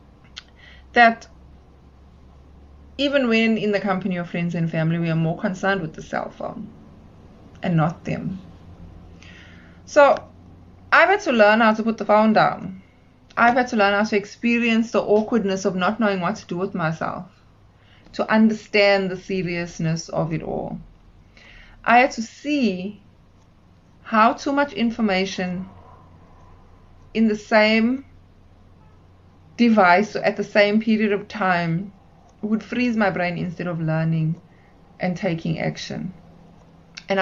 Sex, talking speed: female, 135 wpm